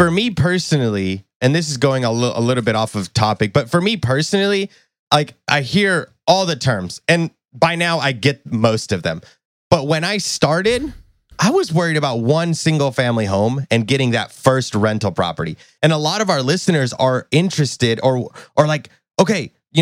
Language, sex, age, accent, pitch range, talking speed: English, male, 20-39, American, 115-155 Hz, 195 wpm